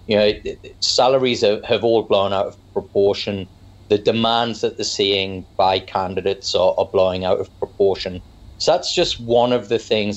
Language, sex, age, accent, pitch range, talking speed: English, male, 30-49, British, 95-115 Hz, 170 wpm